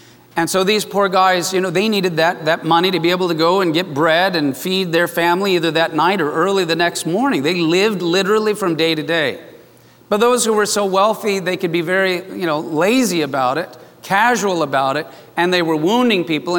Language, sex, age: English, male, 40-59